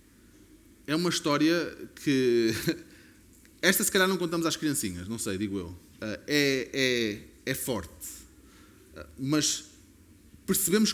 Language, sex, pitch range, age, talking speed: Portuguese, male, 135-185 Hz, 20-39, 115 wpm